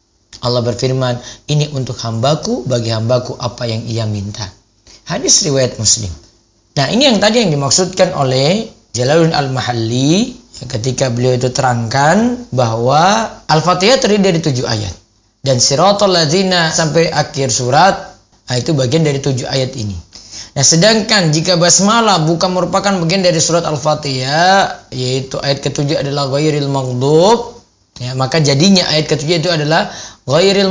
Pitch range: 130-180 Hz